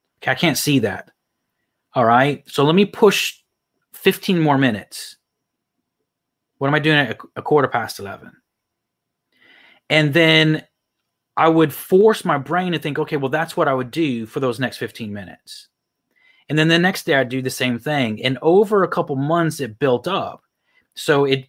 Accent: American